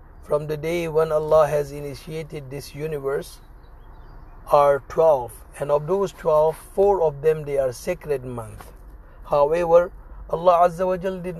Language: English